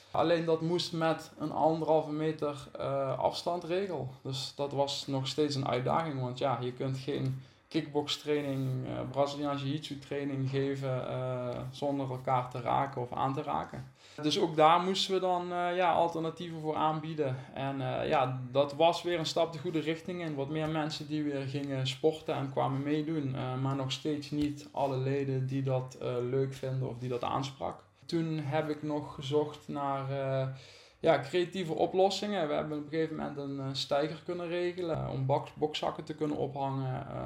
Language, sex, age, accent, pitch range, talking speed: Dutch, male, 20-39, Dutch, 130-155 Hz, 180 wpm